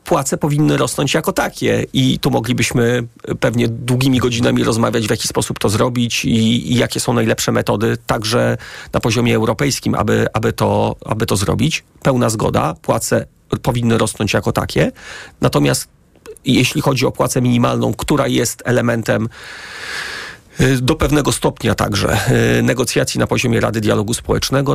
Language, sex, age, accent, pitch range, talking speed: Polish, male, 30-49, native, 105-125 Hz, 140 wpm